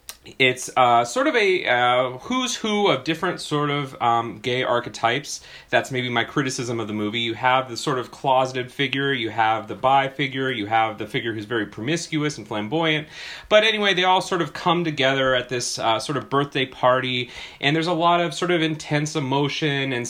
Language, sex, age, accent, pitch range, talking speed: English, male, 30-49, American, 115-150 Hz, 205 wpm